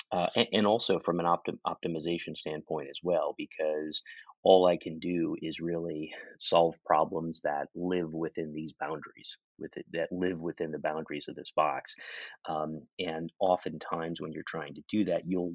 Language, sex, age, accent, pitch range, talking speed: English, male, 30-49, American, 80-90 Hz, 175 wpm